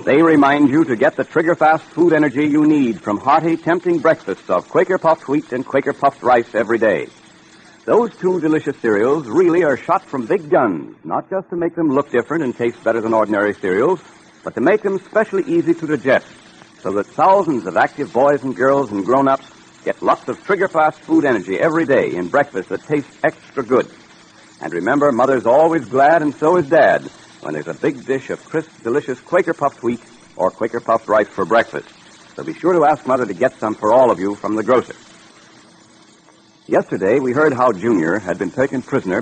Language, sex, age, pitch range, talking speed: English, male, 60-79, 120-165 Hz, 200 wpm